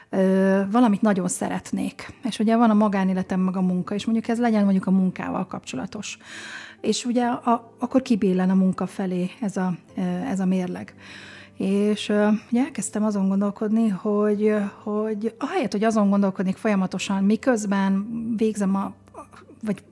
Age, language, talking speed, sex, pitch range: 30-49, Hungarian, 145 wpm, female, 185-215 Hz